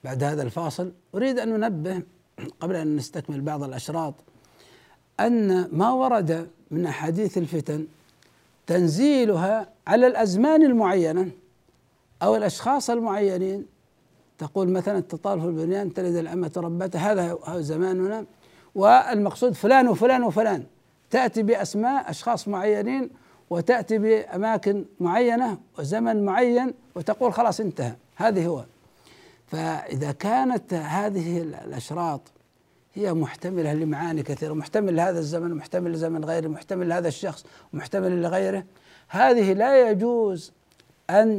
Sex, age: male, 60-79